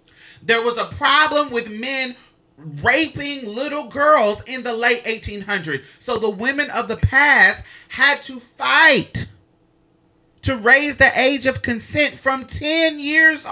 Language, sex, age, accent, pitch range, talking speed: English, male, 30-49, American, 175-265 Hz, 140 wpm